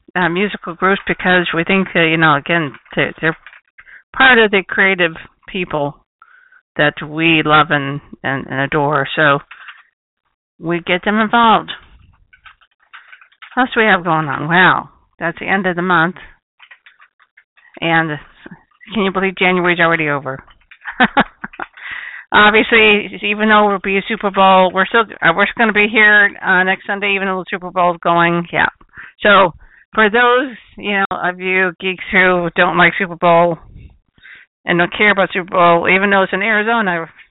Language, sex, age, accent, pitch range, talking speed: English, female, 50-69, American, 165-200 Hz, 160 wpm